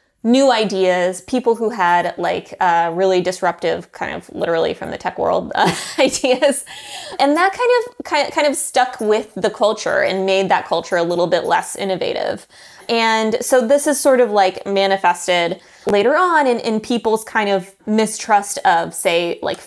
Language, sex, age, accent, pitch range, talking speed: English, female, 20-39, American, 180-235 Hz, 170 wpm